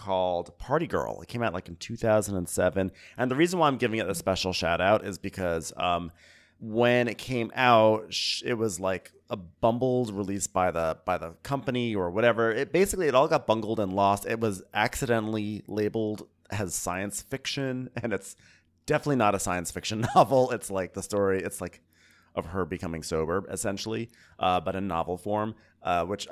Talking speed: 185 wpm